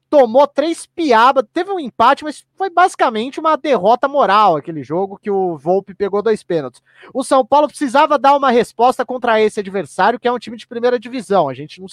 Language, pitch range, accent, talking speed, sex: Portuguese, 225-335 Hz, Brazilian, 200 wpm, male